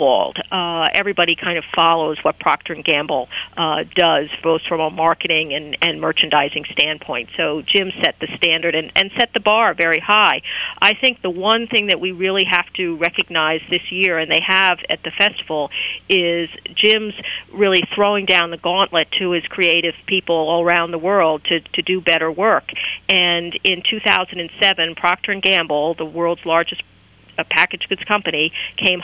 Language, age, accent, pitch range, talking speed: English, 50-69, American, 165-190 Hz, 170 wpm